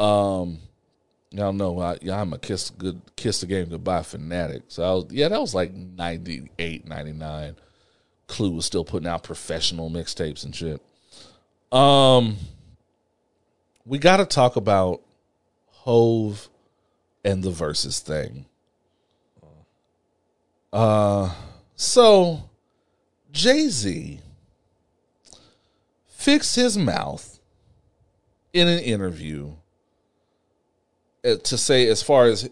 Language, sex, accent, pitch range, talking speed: English, male, American, 90-135 Hz, 105 wpm